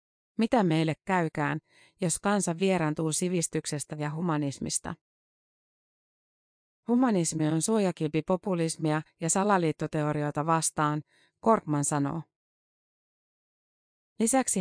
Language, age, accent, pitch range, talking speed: Finnish, 30-49, native, 155-185 Hz, 75 wpm